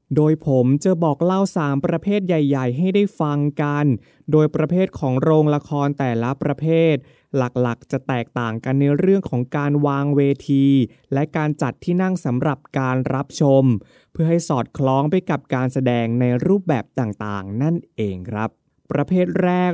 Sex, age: male, 20-39